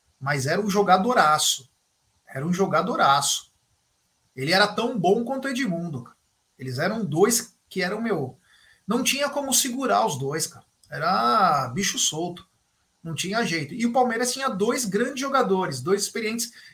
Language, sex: Portuguese, male